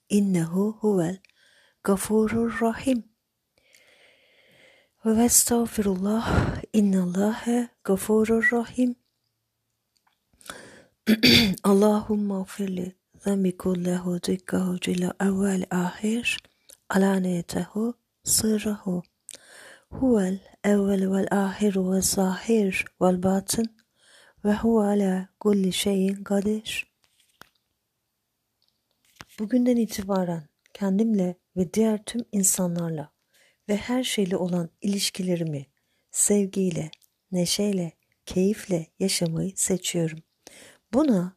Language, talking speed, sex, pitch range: Turkish, 70 wpm, female, 180-210 Hz